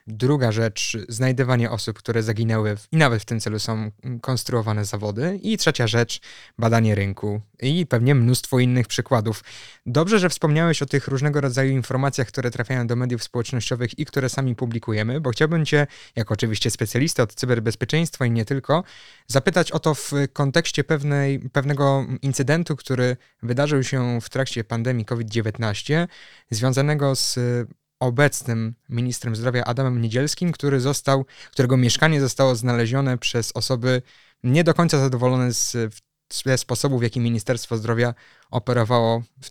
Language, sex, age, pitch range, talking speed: Polish, male, 20-39, 115-140 Hz, 140 wpm